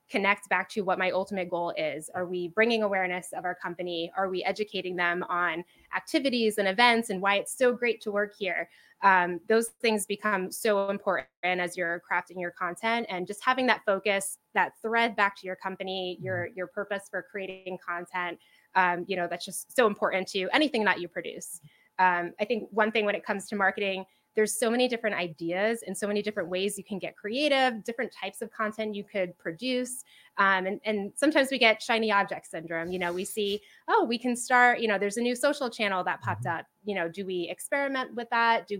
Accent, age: American, 20-39